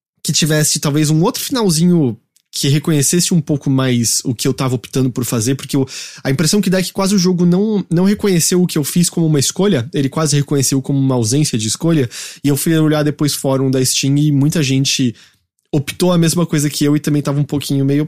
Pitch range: 120-155 Hz